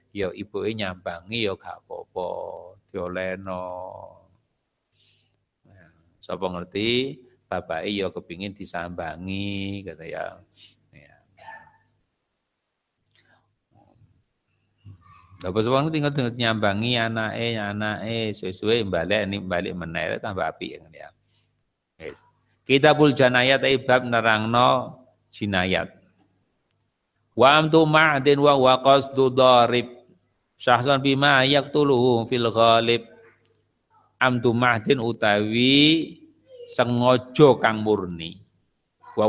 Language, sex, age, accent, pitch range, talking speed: Indonesian, male, 50-69, native, 100-130 Hz, 95 wpm